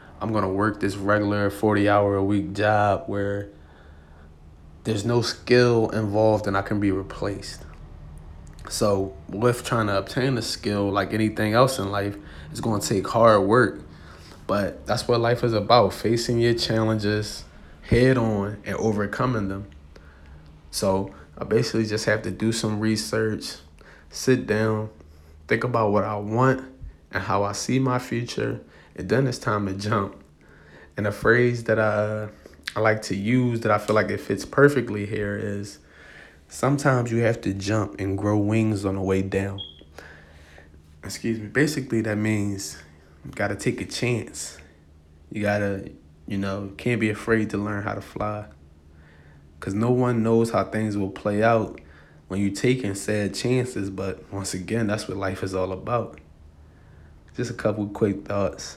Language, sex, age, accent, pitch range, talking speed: English, male, 20-39, American, 95-110 Hz, 165 wpm